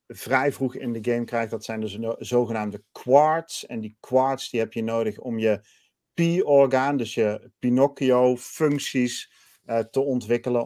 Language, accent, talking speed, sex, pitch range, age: Dutch, Dutch, 145 wpm, male, 110-130 Hz, 40-59